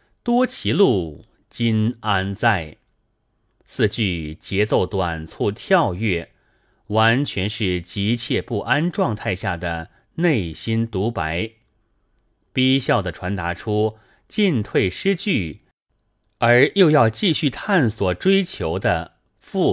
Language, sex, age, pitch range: Chinese, male, 30-49, 90-125 Hz